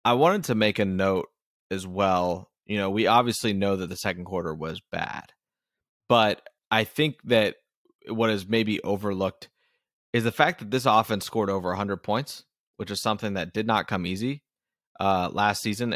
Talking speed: 180 wpm